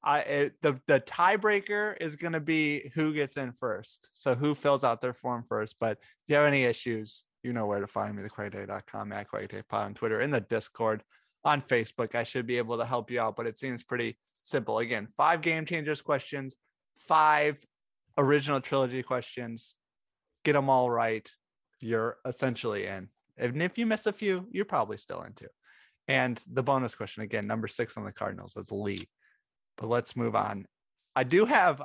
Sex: male